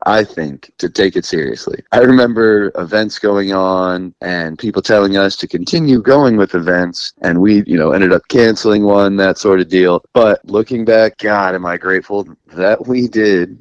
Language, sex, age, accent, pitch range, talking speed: English, male, 30-49, American, 90-110 Hz, 185 wpm